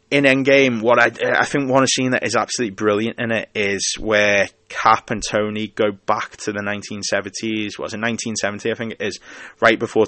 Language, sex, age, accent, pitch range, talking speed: English, male, 20-39, British, 100-115 Hz, 200 wpm